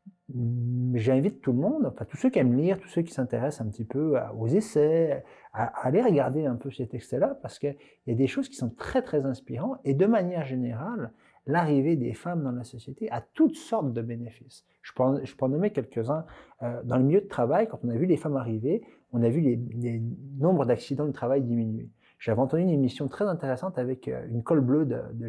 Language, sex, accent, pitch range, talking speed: French, male, French, 115-145 Hz, 225 wpm